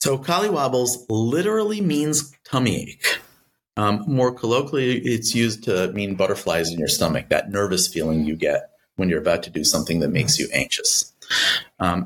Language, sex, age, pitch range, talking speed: English, male, 30-49, 85-120 Hz, 165 wpm